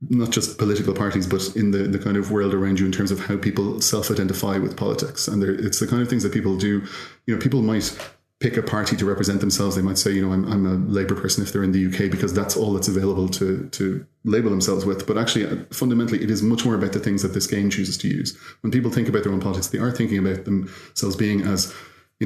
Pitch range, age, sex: 95-105 Hz, 30-49, male